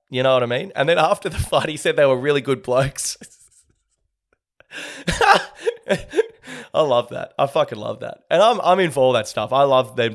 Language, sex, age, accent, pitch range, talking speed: English, male, 20-39, Australian, 125-150 Hz, 205 wpm